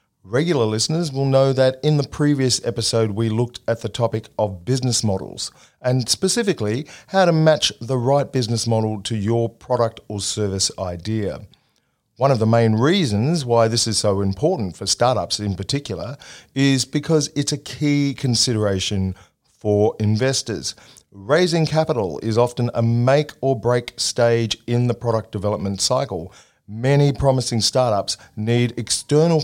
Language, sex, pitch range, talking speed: English, male, 110-140 Hz, 150 wpm